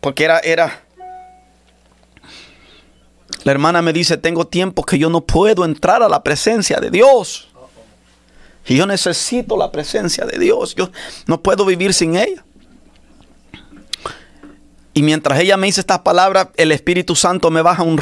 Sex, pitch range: male, 135-170 Hz